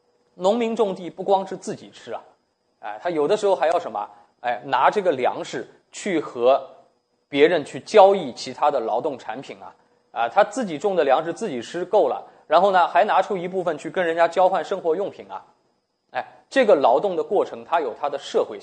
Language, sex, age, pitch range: Chinese, male, 20-39, 150-210 Hz